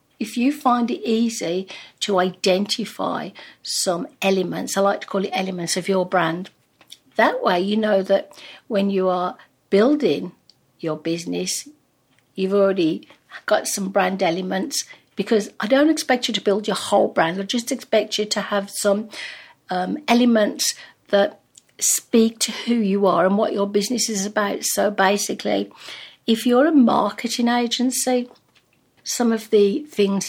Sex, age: female, 60-79